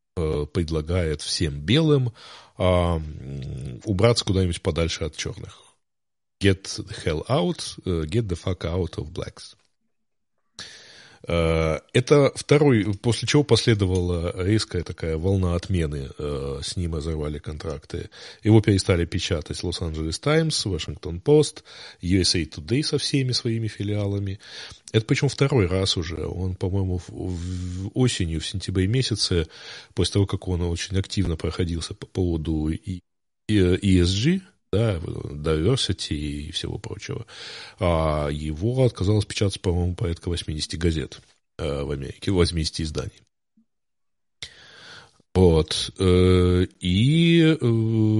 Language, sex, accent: Russian, male, native